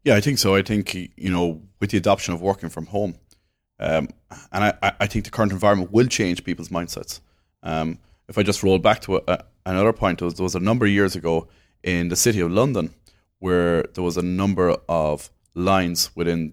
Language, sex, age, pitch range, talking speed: English, male, 30-49, 85-105 Hz, 220 wpm